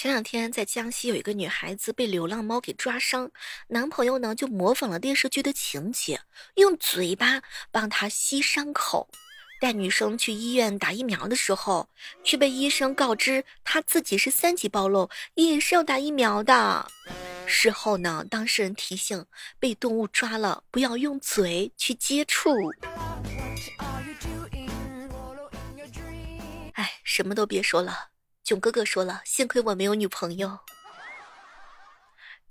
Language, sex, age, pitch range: Chinese, female, 20-39, 200-270 Hz